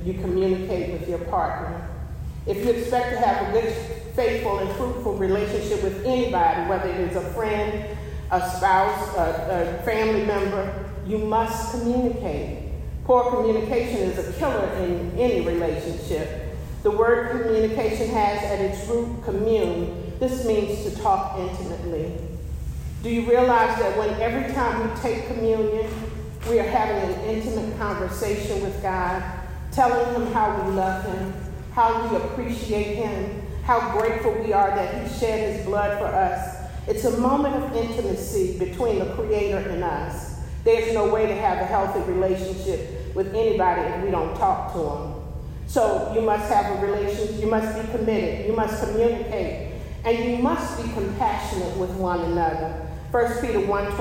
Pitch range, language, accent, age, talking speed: 200-235 Hz, English, American, 40-59, 155 wpm